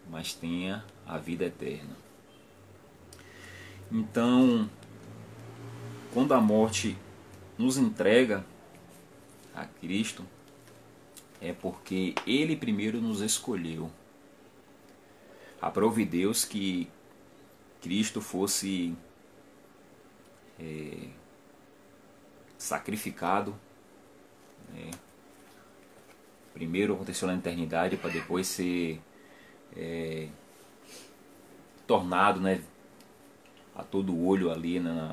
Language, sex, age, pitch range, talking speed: Portuguese, male, 30-49, 85-105 Hz, 70 wpm